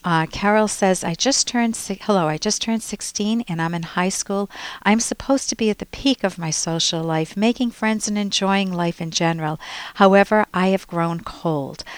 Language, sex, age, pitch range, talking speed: English, female, 50-69, 165-220 Hz, 180 wpm